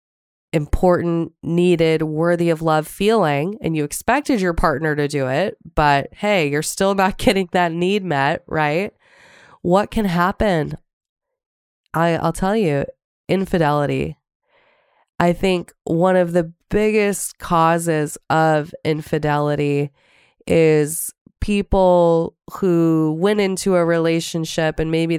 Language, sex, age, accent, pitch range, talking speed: English, female, 20-39, American, 155-180 Hz, 115 wpm